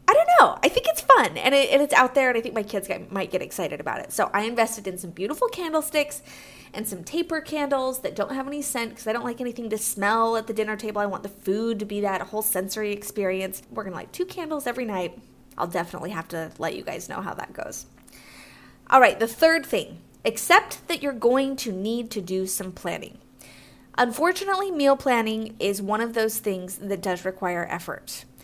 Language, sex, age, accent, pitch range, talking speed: English, female, 20-39, American, 195-275 Hz, 220 wpm